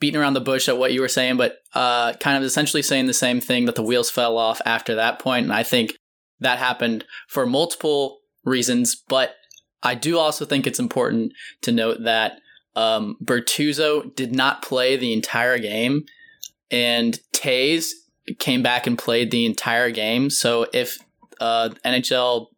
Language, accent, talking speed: English, American, 175 wpm